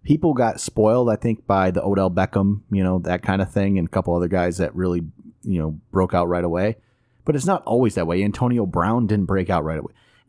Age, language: 30-49, English